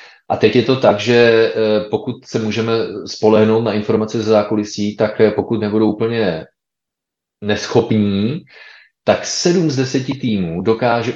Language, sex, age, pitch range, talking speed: Slovak, male, 30-49, 105-120 Hz, 135 wpm